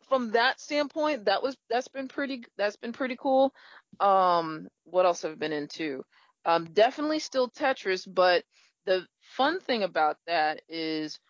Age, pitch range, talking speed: 30-49, 165-245 Hz, 160 wpm